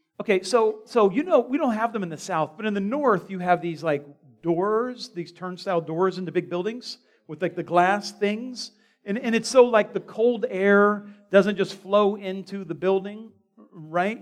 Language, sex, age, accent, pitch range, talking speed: English, male, 40-59, American, 155-220 Hz, 200 wpm